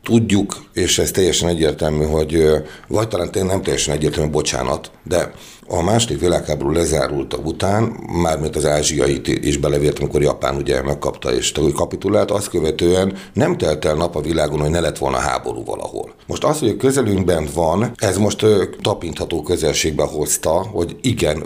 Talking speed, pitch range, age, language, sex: 155 wpm, 75-95 Hz, 60-79, Hungarian, male